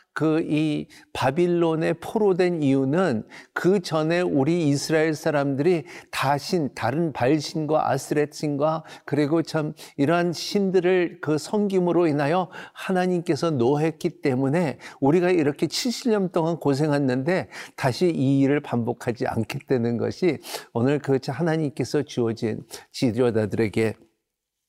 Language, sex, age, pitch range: Korean, male, 50-69, 130-170 Hz